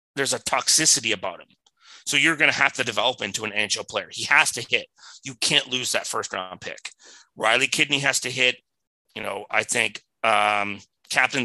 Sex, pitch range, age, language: male, 135-190 Hz, 30-49, English